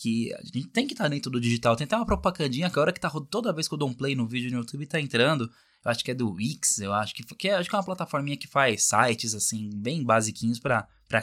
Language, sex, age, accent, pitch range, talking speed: Portuguese, male, 20-39, Brazilian, 120-155 Hz, 305 wpm